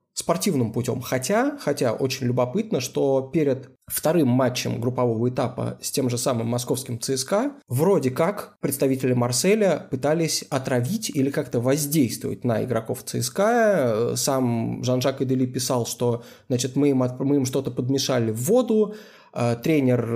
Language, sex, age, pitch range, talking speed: Russian, male, 20-39, 125-145 Hz, 130 wpm